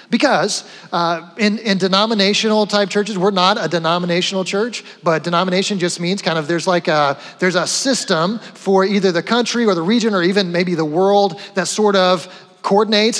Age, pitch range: 30-49, 180-220 Hz